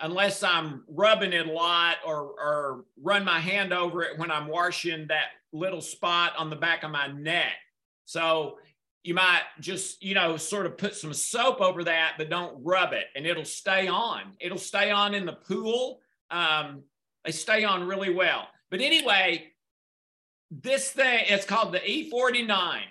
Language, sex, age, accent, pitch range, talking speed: English, male, 50-69, American, 170-215 Hz, 175 wpm